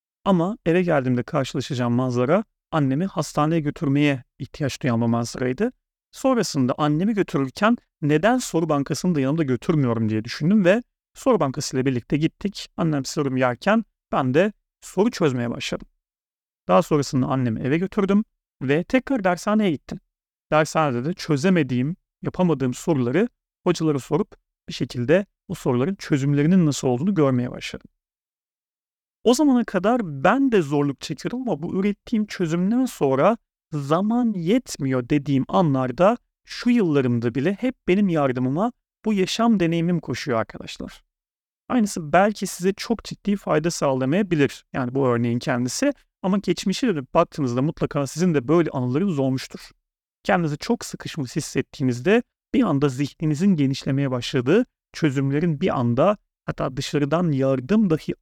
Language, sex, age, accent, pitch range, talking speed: Turkish, male, 40-59, native, 135-195 Hz, 130 wpm